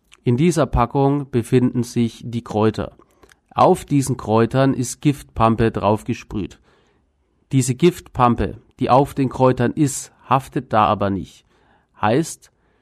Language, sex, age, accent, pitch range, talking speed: German, male, 40-59, German, 110-135 Hz, 115 wpm